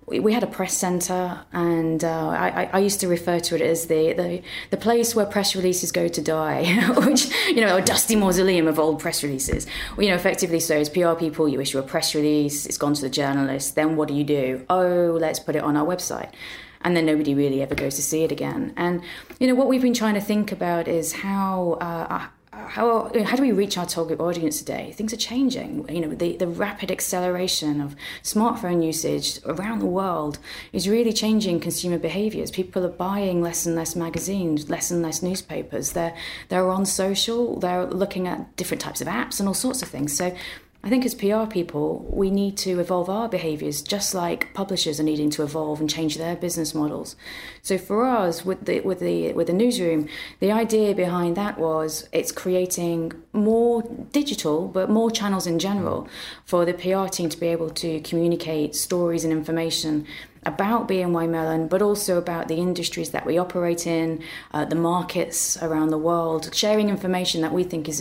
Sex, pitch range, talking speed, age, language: female, 160-195 Hz, 200 wpm, 30-49, English